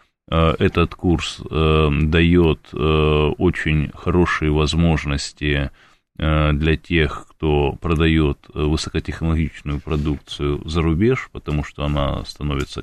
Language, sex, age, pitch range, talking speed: Russian, male, 20-39, 75-85 Hz, 100 wpm